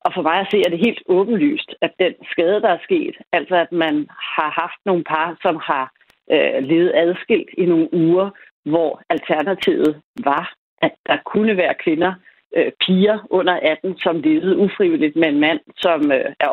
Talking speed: 190 wpm